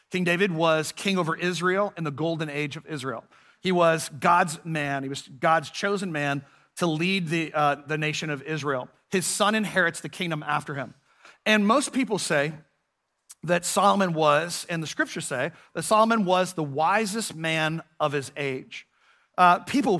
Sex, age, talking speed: male, 40-59, 175 wpm